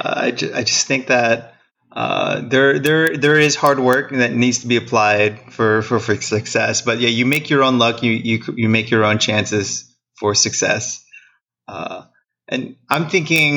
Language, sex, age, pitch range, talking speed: English, male, 20-39, 115-135 Hz, 190 wpm